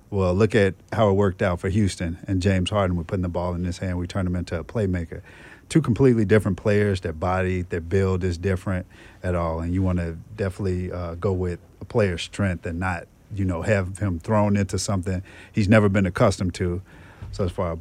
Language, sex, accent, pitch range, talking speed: English, male, American, 90-105 Hz, 215 wpm